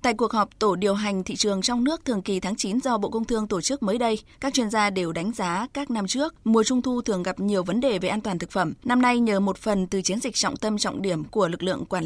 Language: Vietnamese